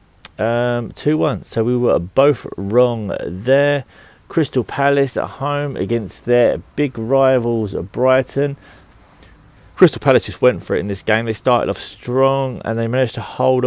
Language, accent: English, British